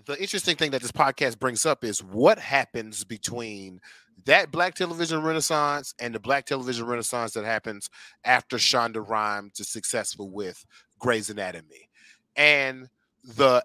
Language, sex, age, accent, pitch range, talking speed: English, male, 30-49, American, 110-145 Hz, 145 wpm